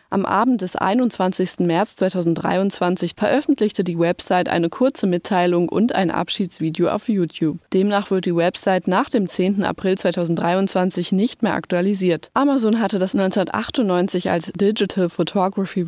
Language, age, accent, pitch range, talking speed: German, 20-39, German, 175-205 Hz, 135 wpm